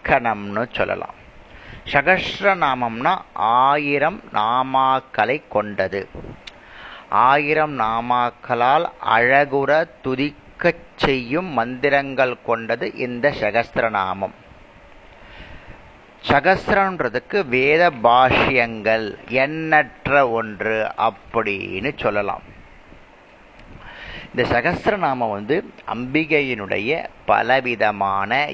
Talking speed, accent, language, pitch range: 50 wpm, native, Tamil, 120-160 Hz